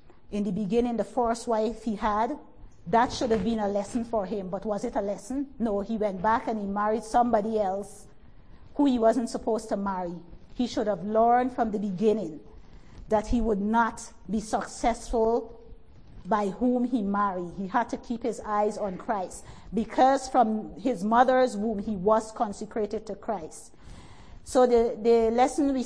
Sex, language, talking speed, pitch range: female, English, 175 wpm, 215-255 Hz